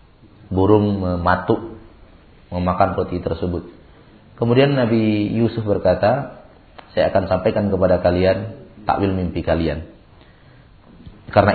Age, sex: 40-59, male